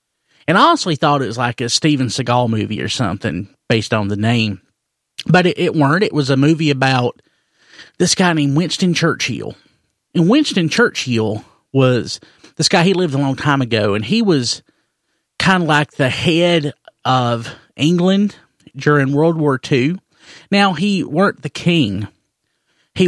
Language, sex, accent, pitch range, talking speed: English, male, American, 120-175 Hz, 165 wpm